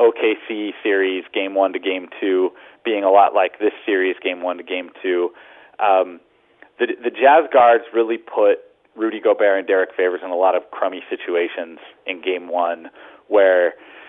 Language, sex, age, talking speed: English, male, 30-49, 170 wpm